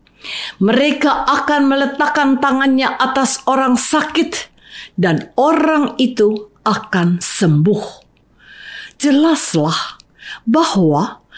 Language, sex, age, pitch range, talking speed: Indonesian, female, 50-69, 205-300 Hz, 75 wpm